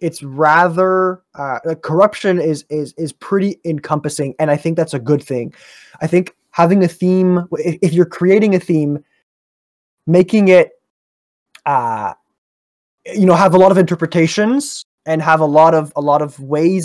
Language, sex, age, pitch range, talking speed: English, male, 20-39, 145-175 Hz, 165 wpm